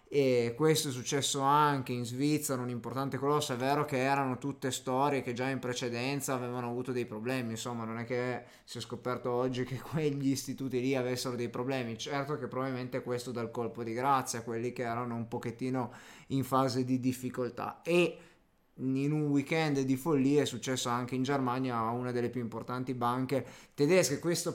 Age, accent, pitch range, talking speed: 20-39, native, 125-145 Hz, 190 wpm